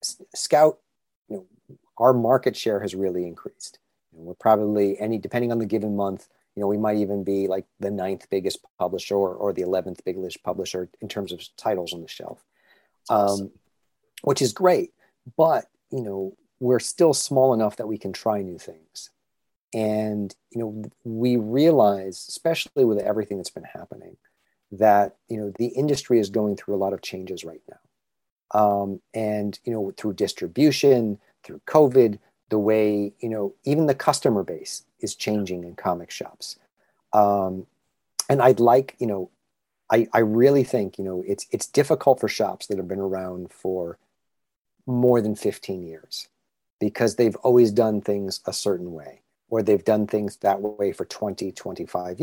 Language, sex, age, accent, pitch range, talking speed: English, male, 40-59, American, 100-120 Hz, 170 wpm